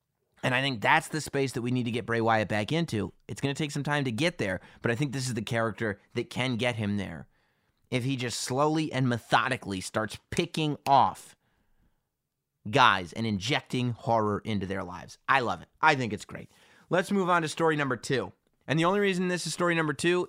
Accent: American